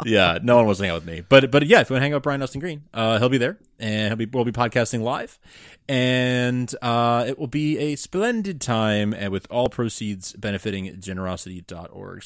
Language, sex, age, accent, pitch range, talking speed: English, male, 30-49, American, 100-140 Hz, 230 wpm